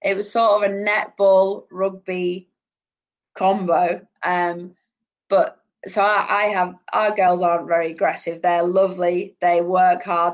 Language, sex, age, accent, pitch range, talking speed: English, female, 20-39, British, 175-195 Hz, 140 wpm